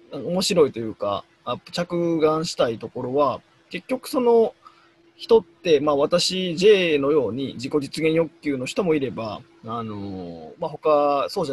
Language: Japanese